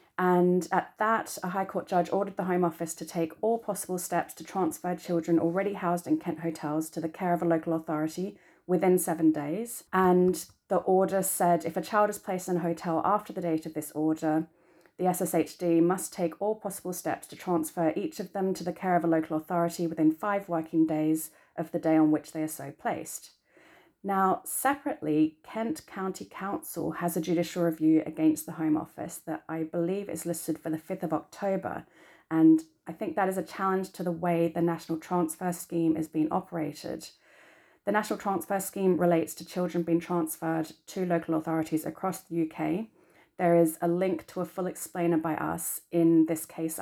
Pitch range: 160-185 Hz